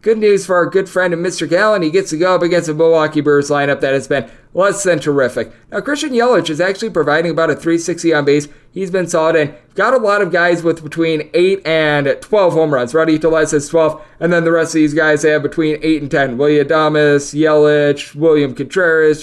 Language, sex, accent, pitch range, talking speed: English, male, American, 155-180 Hz, 230 wpm